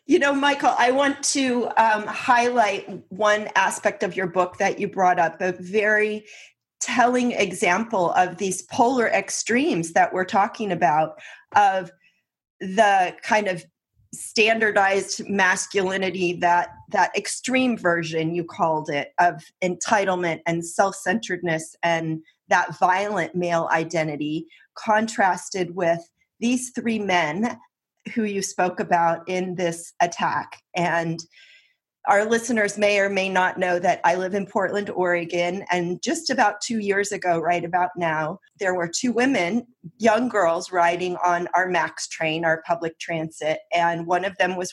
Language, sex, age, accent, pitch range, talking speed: English, female, 30-49, American, 170-210 Hz, 140 wpm